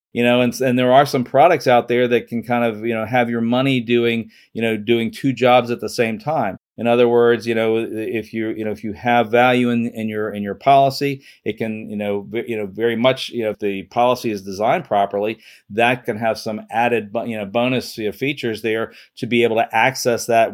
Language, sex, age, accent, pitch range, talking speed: English, male, 40-59, American, 110-125 Hz, 240 wpm